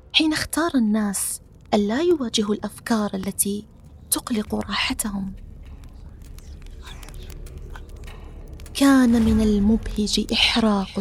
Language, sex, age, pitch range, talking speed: Arabic, female, 30-49, 195-235 Hz, 70 wpm